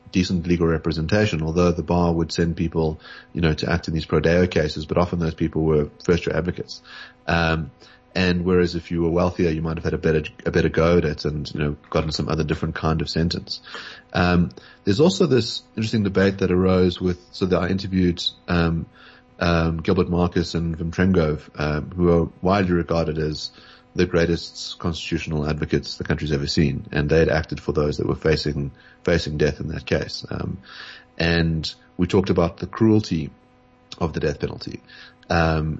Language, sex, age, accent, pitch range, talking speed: English, male, 30-49, Australian, 80-90 Hz, 185 wpm